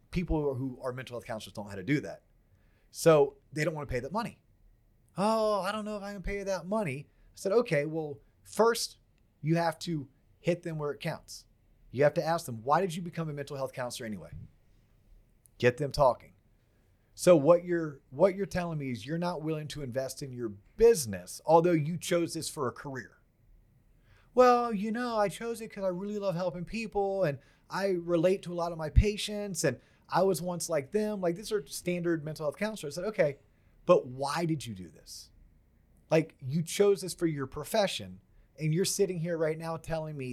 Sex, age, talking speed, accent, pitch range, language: male, 30-49, 215 wpm, American, 120-180 Hz, English